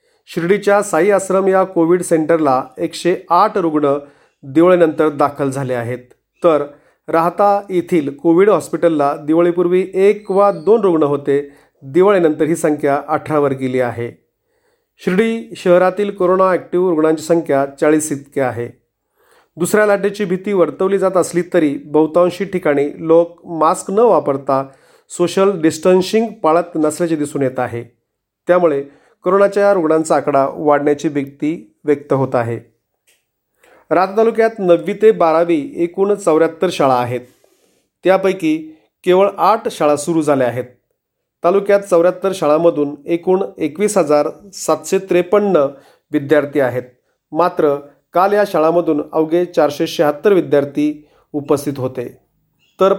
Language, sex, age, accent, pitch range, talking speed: Marathi, male, 40-59, native, 145-185 Hz, 110 wpm